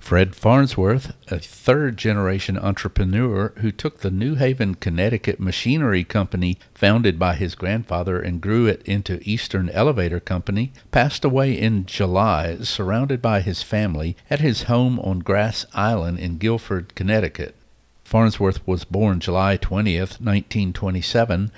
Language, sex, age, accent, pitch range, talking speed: English, male, 60-79, American, 95-115 Hz, 130 wpm